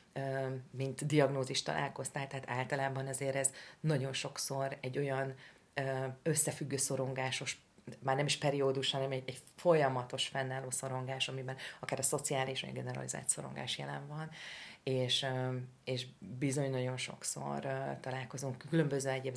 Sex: female